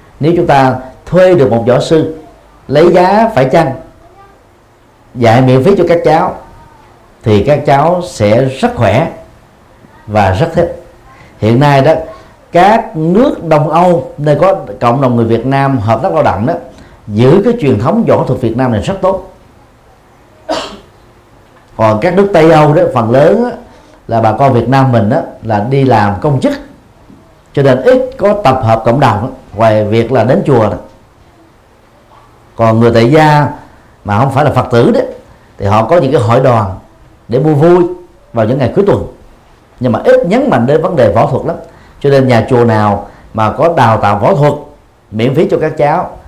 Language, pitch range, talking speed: Vietnamese, 110-155 Hz, 190 wpm